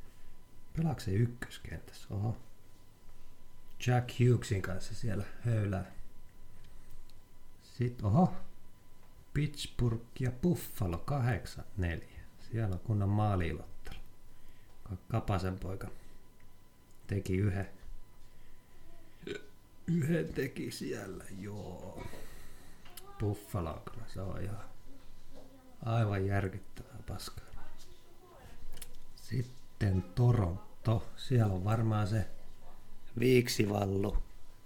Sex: male